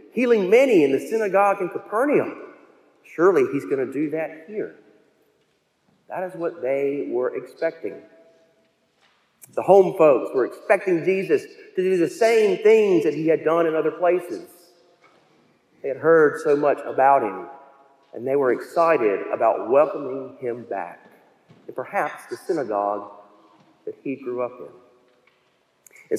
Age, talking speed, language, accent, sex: 40-59, 145 wpm, English, American, male